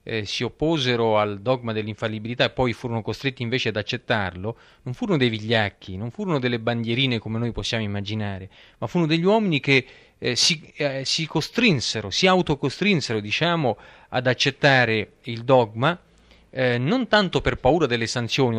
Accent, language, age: native, Italian, 40-59